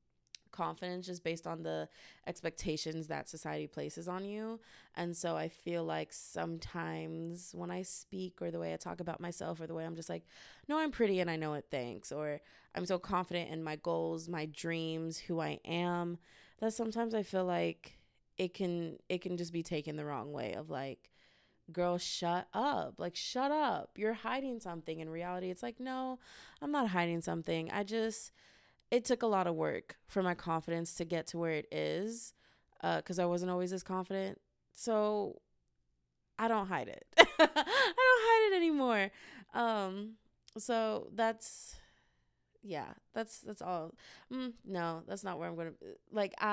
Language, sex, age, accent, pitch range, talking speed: English, female, 20-39, American, 160-210 Hz, 180 wpm